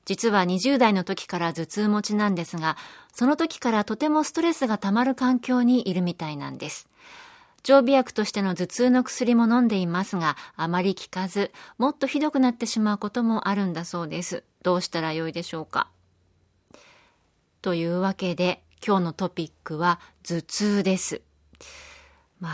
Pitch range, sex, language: 165-230 Hz, female, Japanese